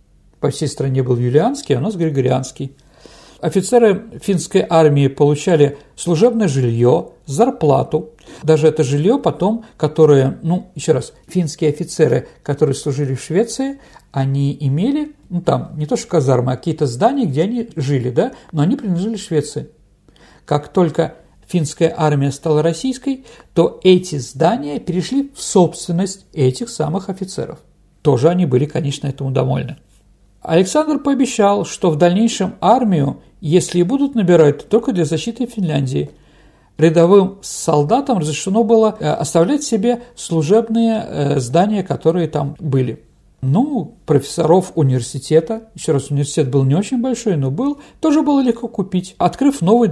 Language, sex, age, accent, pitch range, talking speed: Russian, male, 50-69, native, 150-215 Hz, 135 wpm